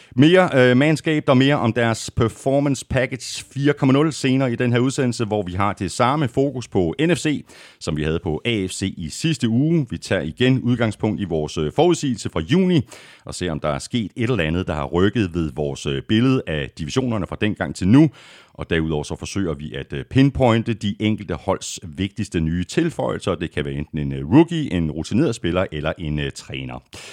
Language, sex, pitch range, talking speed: Danish, male, 90-135 Hz, 190 wpm